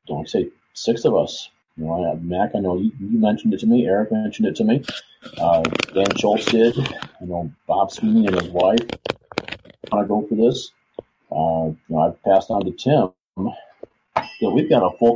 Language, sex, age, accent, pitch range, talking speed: English, male, 40-59, American, 80-115 Hz, 210 wpm